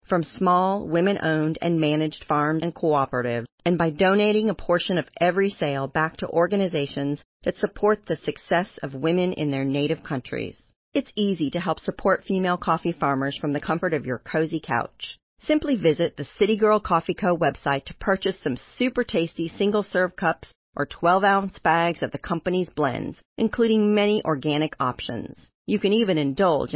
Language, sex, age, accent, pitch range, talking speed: English, female, 40-59, American, 145-195 Hz, 165 wpm